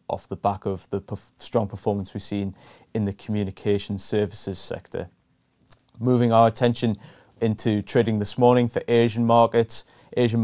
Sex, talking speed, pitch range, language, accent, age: male, 145 wpm, 100-115 Hz, English, British, 20-39